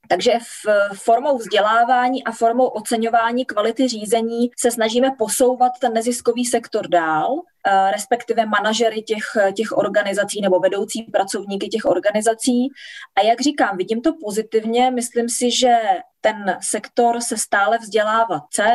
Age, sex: 20-39, female